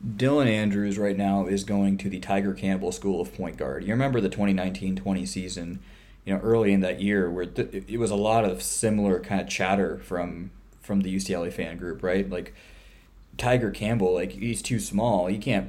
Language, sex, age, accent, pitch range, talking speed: English, male, 20-39, American, 95-110 Hz, 200 wpm